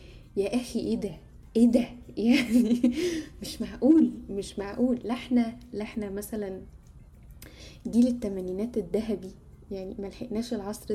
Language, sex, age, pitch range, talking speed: Arabic, female, 10-29, 200-240 Hz, 120 wpm